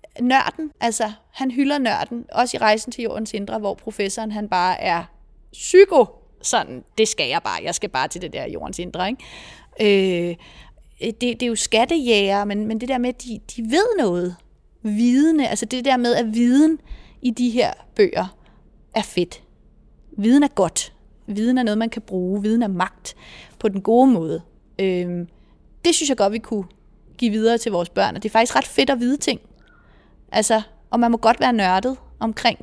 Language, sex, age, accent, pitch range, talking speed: Danish, female, 30-49, native, 200-250 Hz, 195 wpm